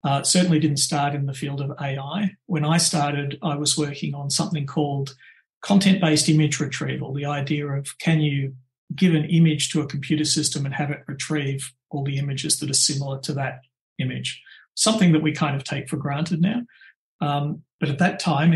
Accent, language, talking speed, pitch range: Australian, English, 195 wpm, 140-160 Hz